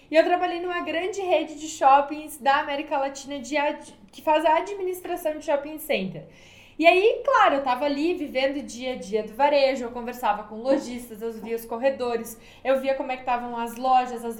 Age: 20-39